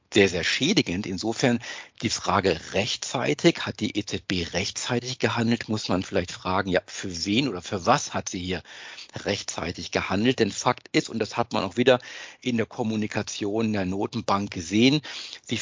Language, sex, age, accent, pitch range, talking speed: German, male, 50-69, German, 100-125 Hz, 165 wpm